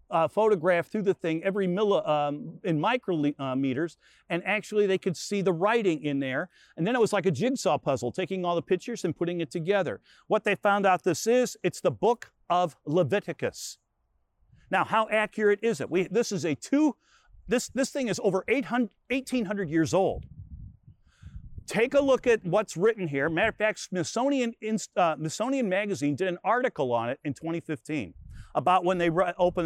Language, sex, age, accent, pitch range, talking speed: English, male, 50-69, American, 150-210 Hz, 190 wpm